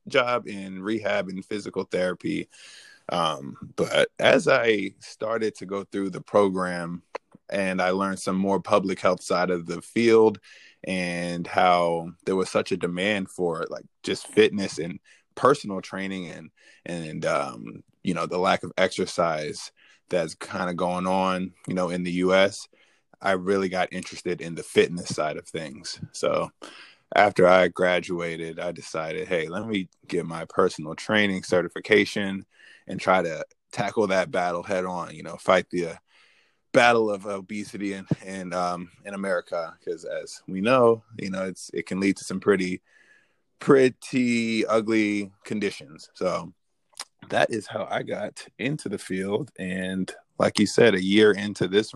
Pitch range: 90-100 Hz